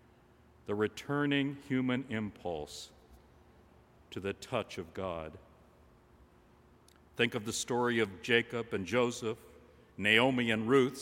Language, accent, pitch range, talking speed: English, American, 80-125 Hz, 110 wpm